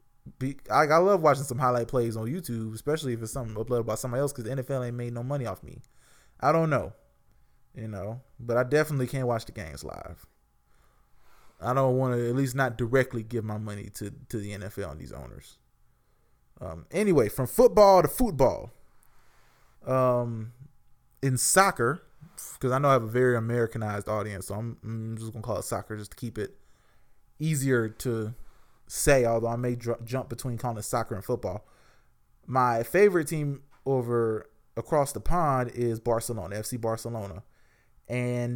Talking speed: 175 wpm